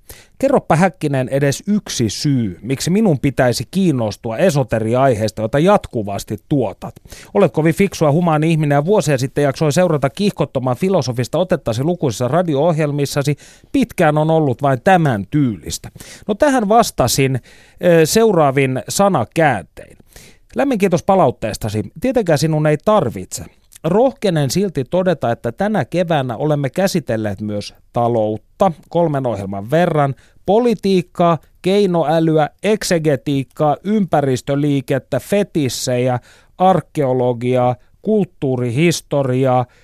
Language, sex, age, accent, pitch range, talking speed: Finnish, male, 30-49, native, 125-180 Hz, 100 wpm